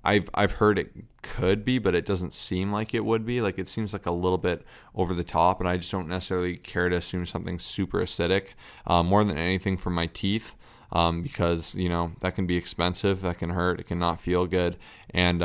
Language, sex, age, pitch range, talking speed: English, male, 20-39, 85-95 Hz, 230 wpm